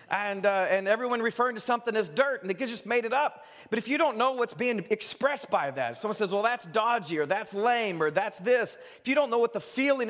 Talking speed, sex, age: 260 wpm, male, 40-59